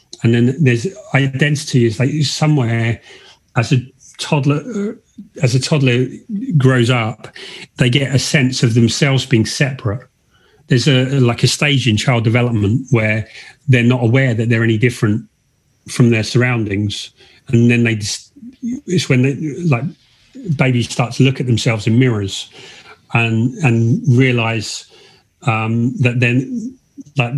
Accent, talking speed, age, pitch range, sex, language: British, 140 wpm, 40-59, 115-135 Hz, male, English